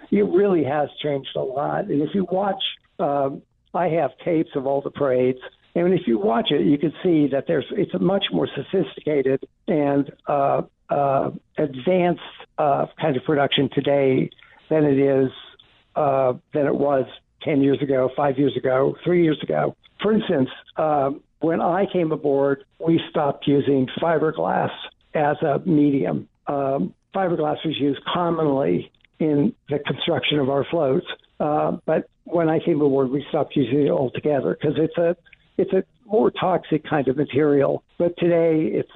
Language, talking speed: English, 165 wpm